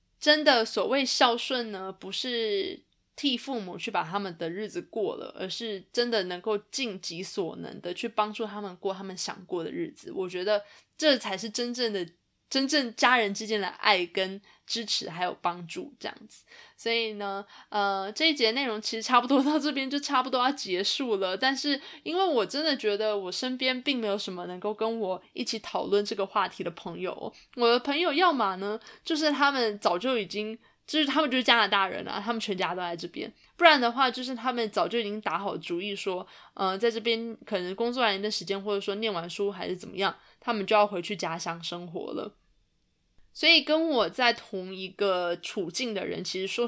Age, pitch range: 20-39, 195-250 Hz